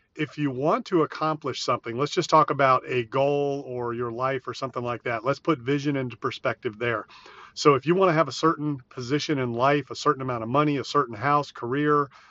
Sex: male